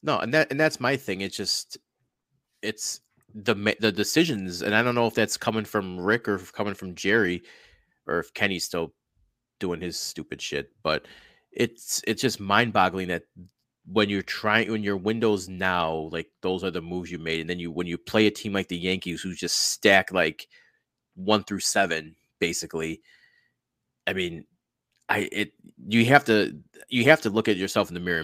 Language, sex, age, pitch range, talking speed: English, male, 30-49, 90-110 Hz, 195 wpm